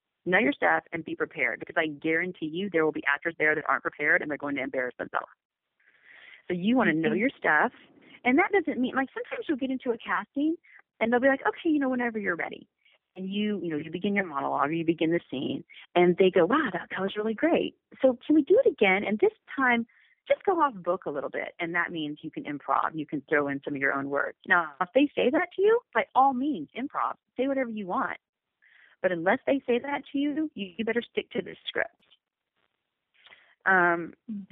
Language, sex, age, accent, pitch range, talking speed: English, female, 30-49, American, 180-285 Hz, 235 wpm